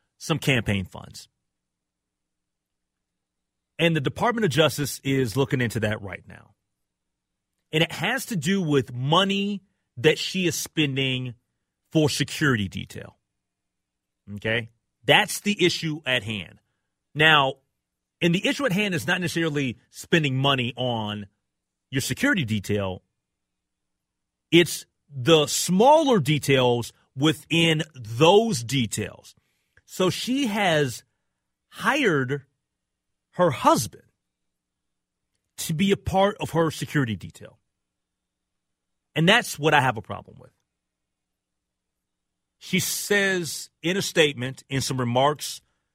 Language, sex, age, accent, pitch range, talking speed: English, male, 30-49, American, 105-160 Hz, 110 wpm